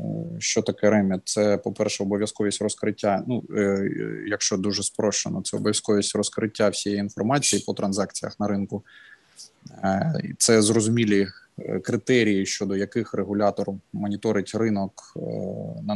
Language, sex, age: Ukrainian, male, 20-39